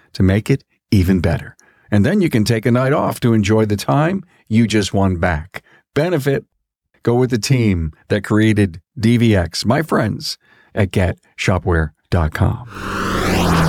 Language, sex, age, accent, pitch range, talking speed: English, male, 50-69, American, 95-130 Hz, 145 wpm